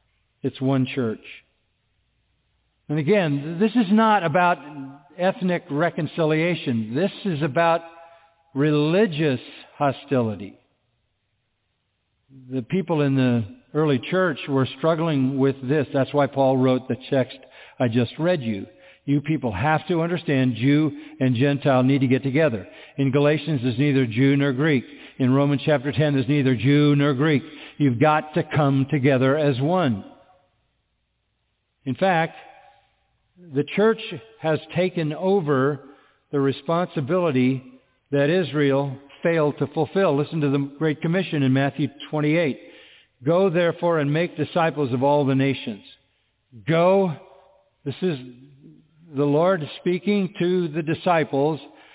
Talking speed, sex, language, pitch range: 130 wpm, male, English, 135-165 Hz